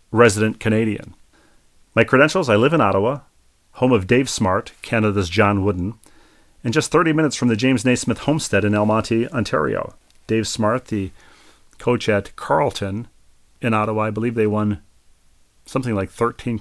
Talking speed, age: 155 wpm, 40-59